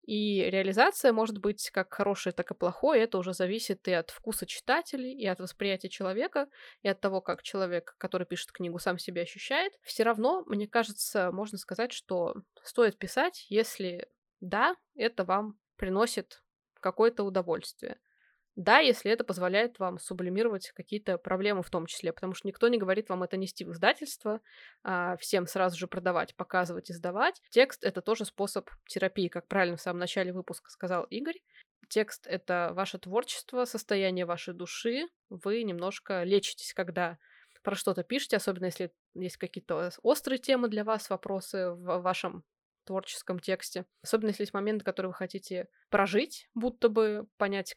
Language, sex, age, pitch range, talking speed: Russian, female, 20-39, 185-225 Hz, 160 wpm